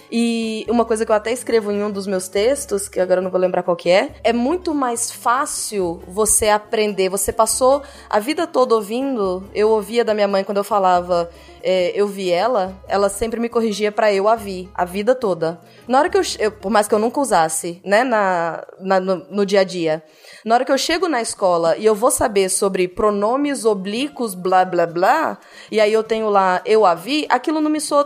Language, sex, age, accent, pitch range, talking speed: Portuguese, female, 20-39, Brazilian, 195-260 Hz, 220 wpm